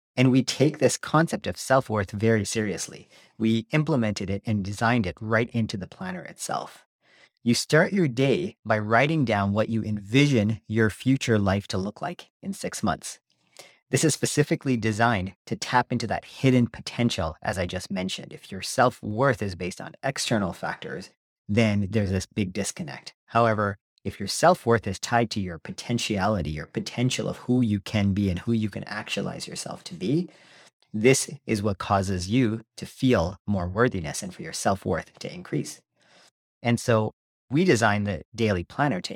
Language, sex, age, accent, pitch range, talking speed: English, male, 40-59, American, 100-130 Hz, 175 wpm